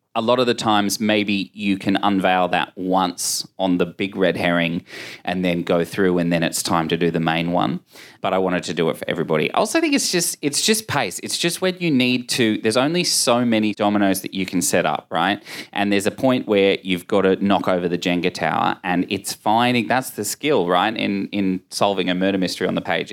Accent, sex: Australian, male